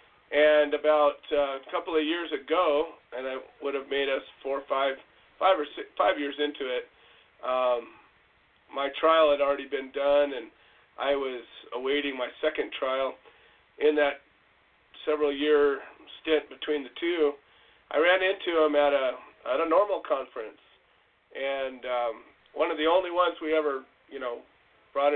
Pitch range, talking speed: 140-170 Hz, 160 wpm